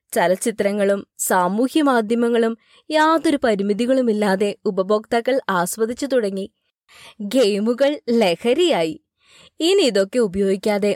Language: Malayalam